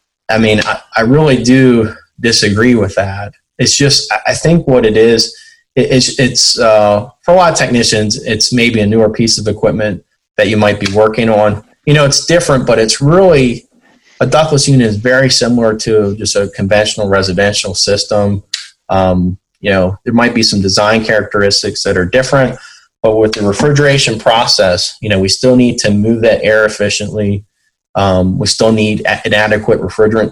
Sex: male